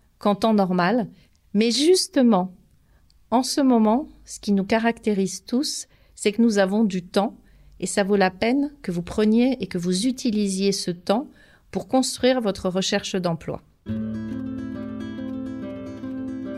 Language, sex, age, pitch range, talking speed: French, female, 40-59, 190-250 Hz, 140 wpm